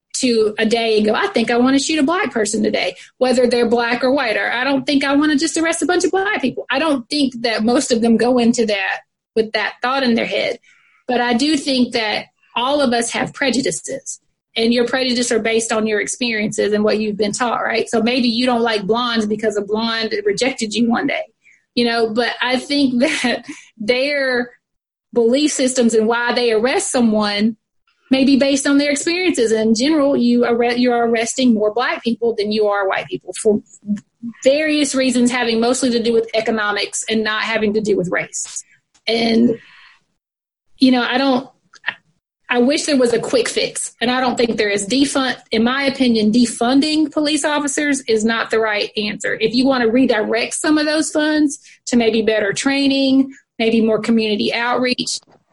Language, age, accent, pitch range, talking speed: English, 30-49, American, 225-270 Hz, 200 wpm